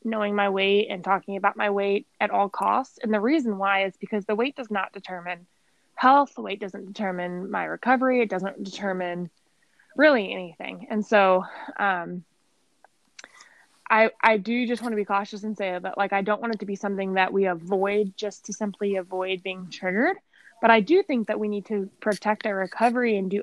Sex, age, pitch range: female, 20-39, 190-225 Hz